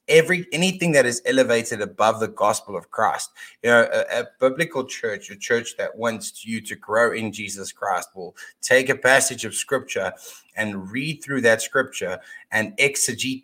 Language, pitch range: English, 110-155 Hz